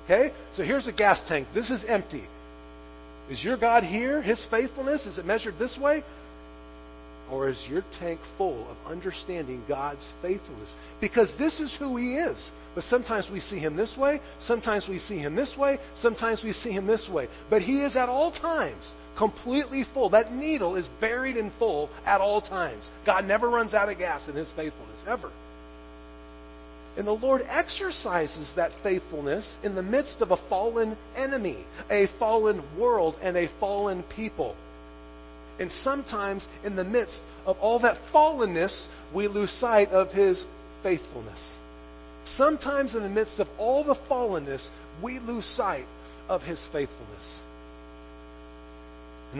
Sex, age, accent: male, 40-59, American